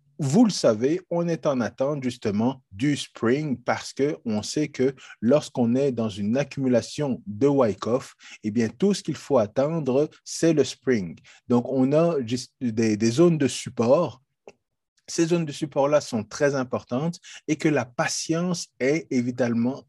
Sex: male